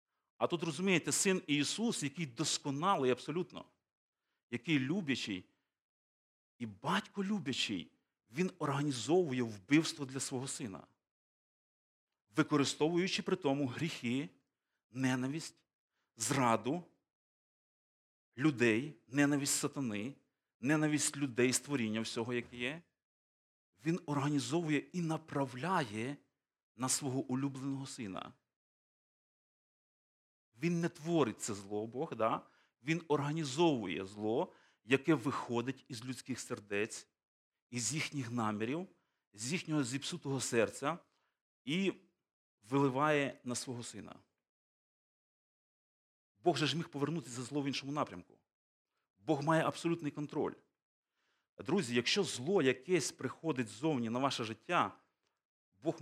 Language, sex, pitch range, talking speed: Ukrainian, male, 125-160 Hz, 100 wpm